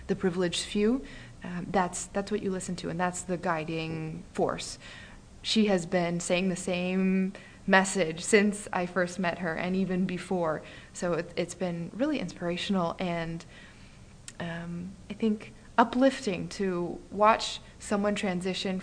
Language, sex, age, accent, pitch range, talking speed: English, female, 20-39, American, 175-210 Hz, 145 wpm